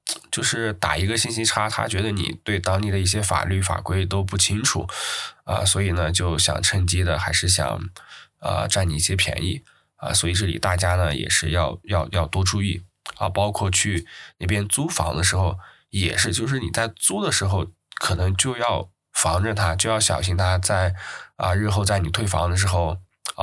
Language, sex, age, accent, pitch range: Chinese, male, 20-39, native, 85-100 Hz